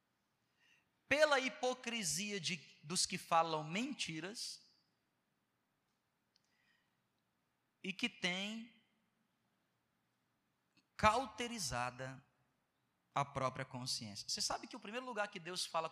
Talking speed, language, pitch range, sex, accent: 85 wpm, Portuguese, 140-205 Hz, male, Brazilian